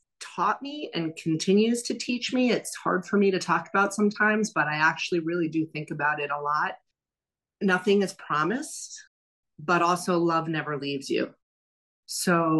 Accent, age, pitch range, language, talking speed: American, 30-49, 145-175 Hz, English, 165 wpm